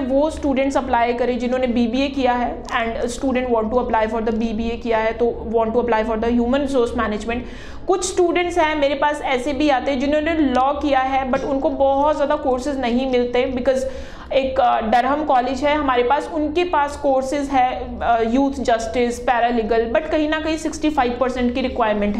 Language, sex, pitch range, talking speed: Punjabi, female, 240-295 Hz, 185 wpm